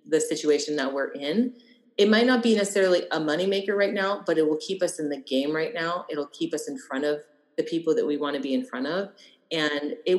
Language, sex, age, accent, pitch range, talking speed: English, female, 30-49, American, 150-185 Hz, 250 wpm